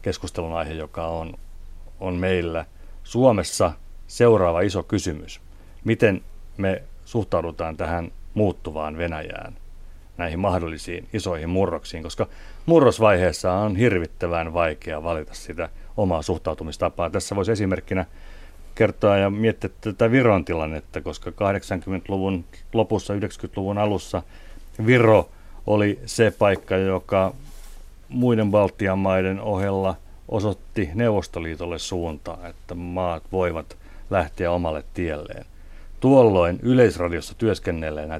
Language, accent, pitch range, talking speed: Finnish, native, 80-105 Hz, 100 wpm